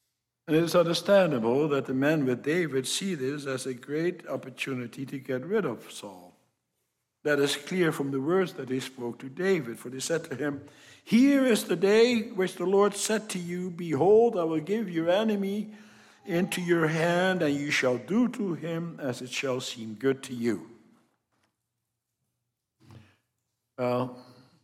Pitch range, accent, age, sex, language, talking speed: 125-195 Hz, American, 60-79, male, English, 165 wpm